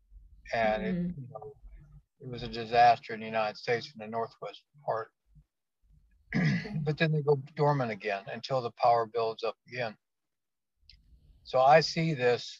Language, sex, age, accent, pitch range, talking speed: English, male, 50-69, American, 120-145 Hz, 150 wpm